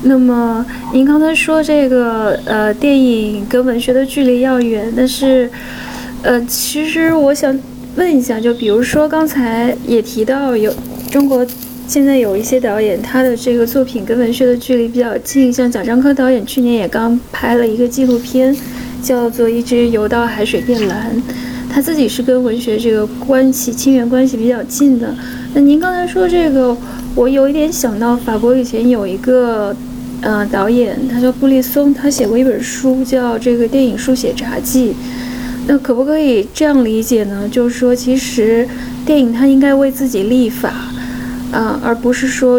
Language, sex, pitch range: Chinese, female, 235-260 Hz